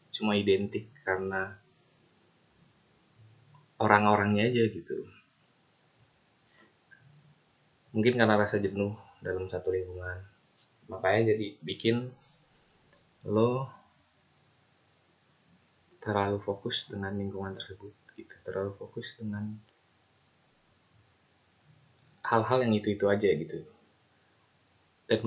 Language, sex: Indonesian, male